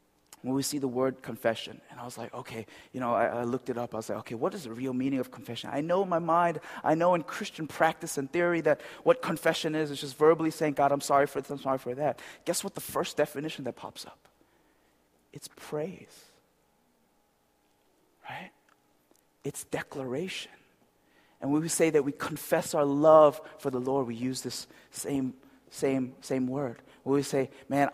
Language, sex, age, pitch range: Korean, male, 30-49, 115-150 Hz